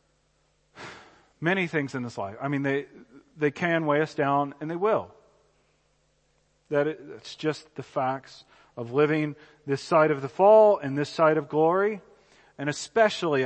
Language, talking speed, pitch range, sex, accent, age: English, 160 wpm, 130-170 Hz, male, American, 40-59